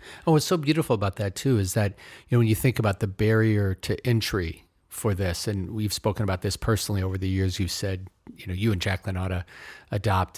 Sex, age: male, 40-59